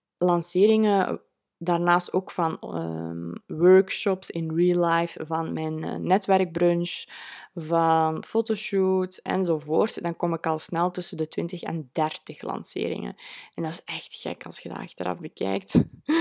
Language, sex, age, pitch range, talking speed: Dutch, female, 20-39, 160-190 Hz, 135 wpm